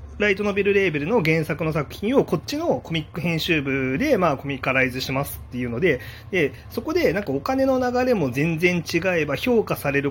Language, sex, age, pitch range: Japanese, male, 30-49, 130-205 Hz